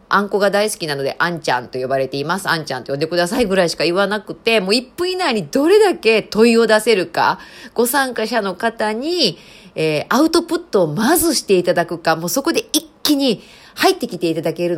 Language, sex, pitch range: Japanese, female, 165-255 Hz